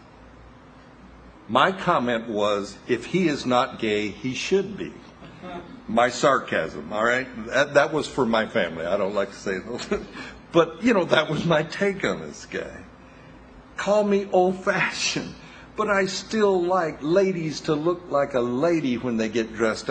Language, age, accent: English, 60-79, American